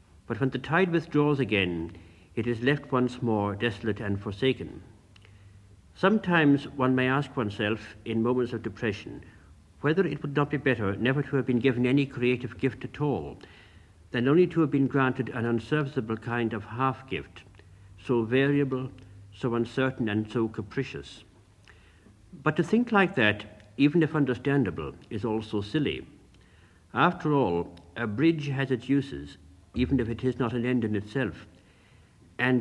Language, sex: English, male